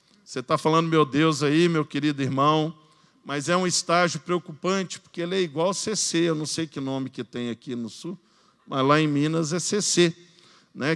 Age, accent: 50-69, Brazilian